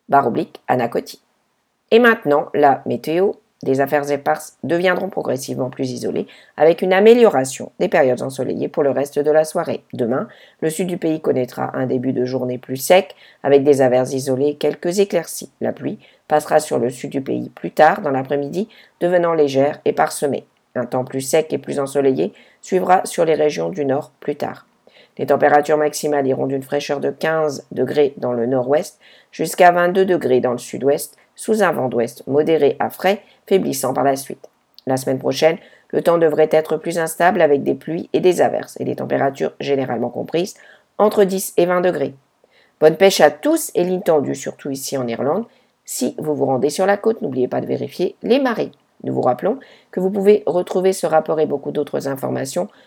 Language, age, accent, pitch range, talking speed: English, 50-69, French, 135-185 Hz, 185 wpm